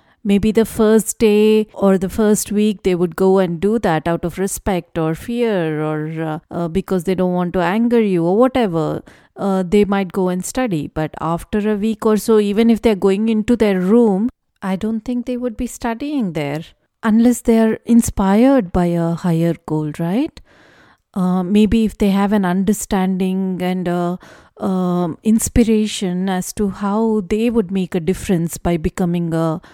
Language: English